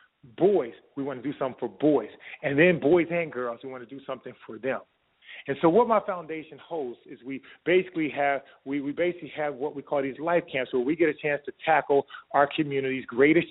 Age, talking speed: 30-49, 220 wpm